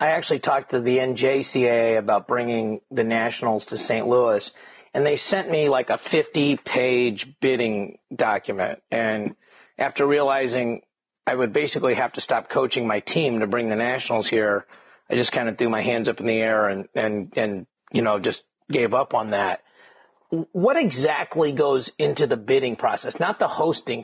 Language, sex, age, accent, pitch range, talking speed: English, male, 40-59, American, 115-145 Hz, 175 wpm